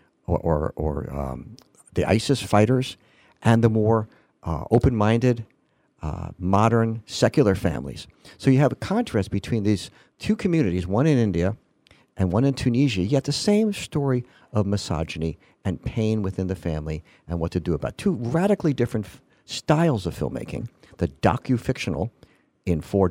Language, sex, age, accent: English, male, 50-69, American